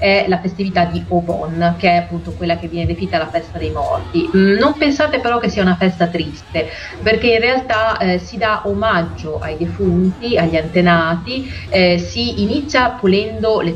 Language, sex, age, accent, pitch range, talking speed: Italian, female, 30-49, native, 165-195 Hz, 175 wpm